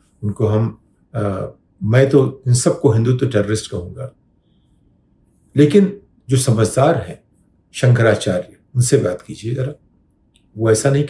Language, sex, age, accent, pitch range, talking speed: Hindi, male, 50-69, native, 110-140 Hz, 125 wpm